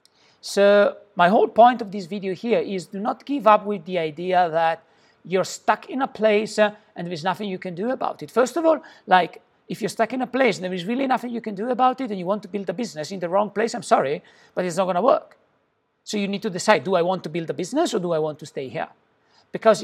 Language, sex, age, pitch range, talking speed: English, male, 50-69, 180-230 Hz, 270 wpm